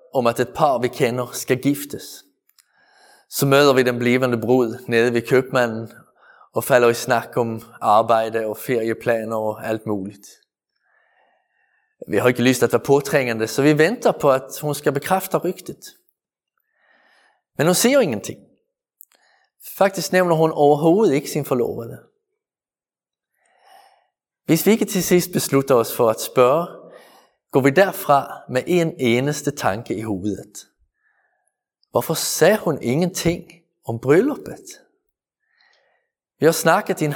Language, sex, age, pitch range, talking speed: Danish, male, 20-39, 130-215 Hz, 140 wpm